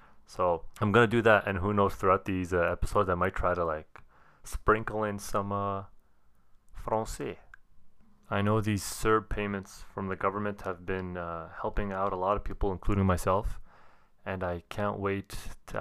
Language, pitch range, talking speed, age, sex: English, 90-105 Hz, 180 wpm, 20-39, male